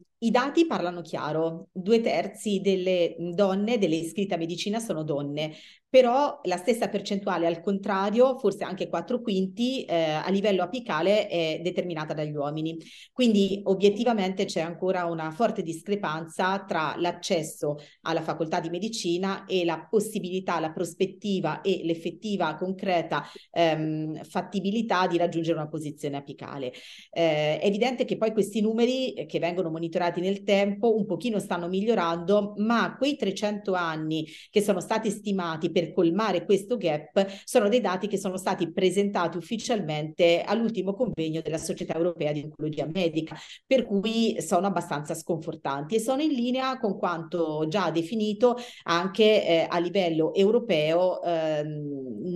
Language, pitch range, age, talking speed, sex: Italian, 165-205 Hz, 30-49, 140 wpm, female